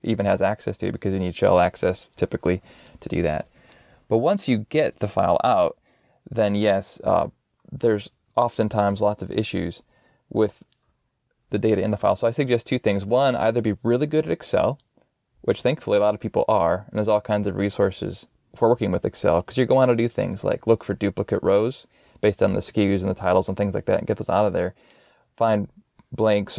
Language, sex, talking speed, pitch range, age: English, male, 210 wpm, 100-115 Hz, 20-39